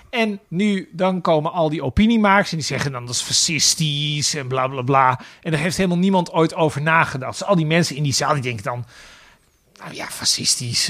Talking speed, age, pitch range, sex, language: 215 wpm, 40-59, 140-180 Hz, male, Dutch